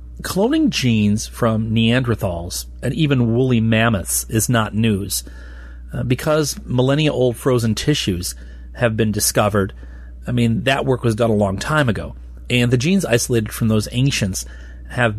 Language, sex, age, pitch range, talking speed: English, male, 40-59, 85-130 Hz, 145 wpm